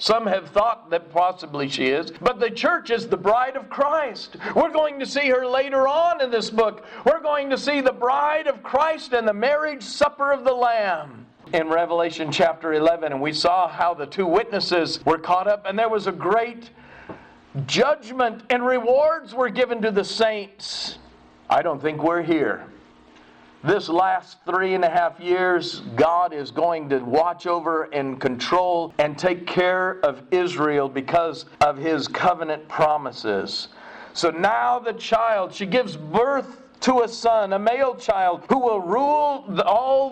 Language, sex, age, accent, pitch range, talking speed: English, male, 50-69, American, 170-250 Hz, 170 wpm